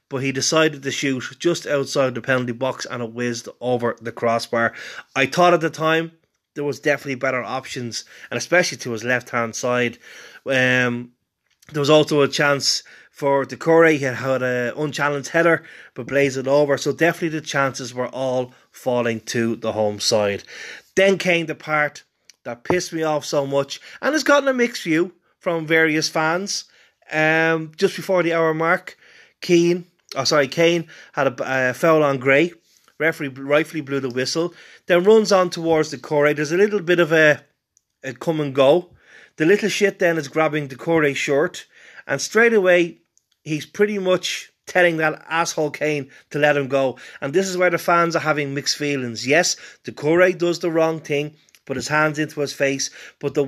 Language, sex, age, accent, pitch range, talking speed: English, male, 30-49, Irish, 135-170 Hz, 185 wpm